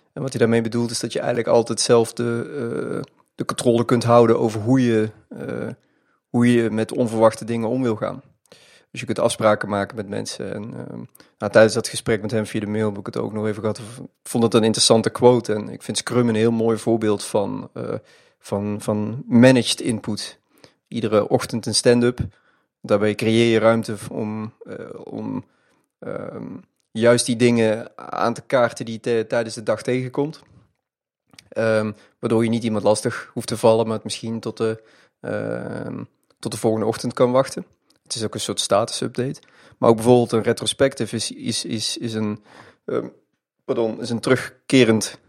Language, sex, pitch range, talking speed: Dutch, male, 110-120 Hz, 185 wpm